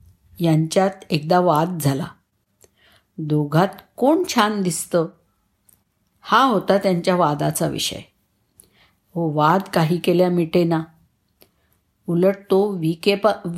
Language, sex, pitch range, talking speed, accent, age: Marathi, female, 150-215 Hz, 95 wpm, native, 50-69